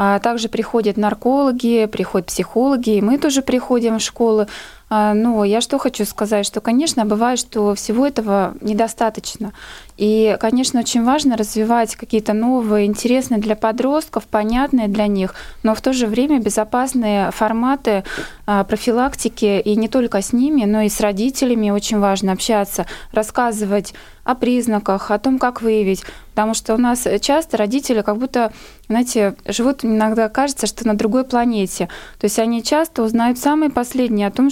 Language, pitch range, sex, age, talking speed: Russian, 215-245 Hz, female, 20-39, 155 wpm